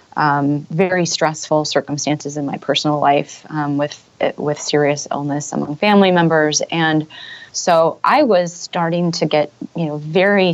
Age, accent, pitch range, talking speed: 20-39, American, 150-185 Hz, 150 wpm